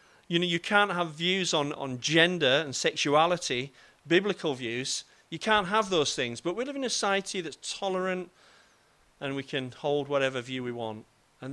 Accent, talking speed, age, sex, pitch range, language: British, 180 wpm, 40-59, male, 135-180 Hz, English